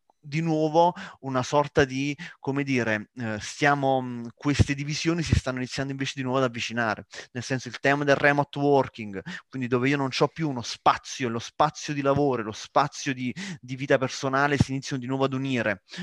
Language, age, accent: Italian, 30-49, native